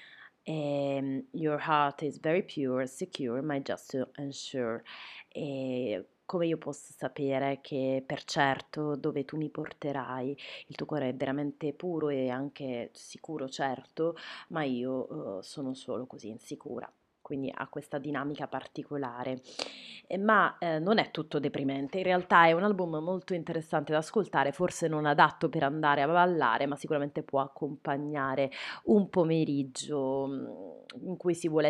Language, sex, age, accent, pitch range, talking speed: Italian, female, 30-49, native, 135-160 Hz, 140 wpm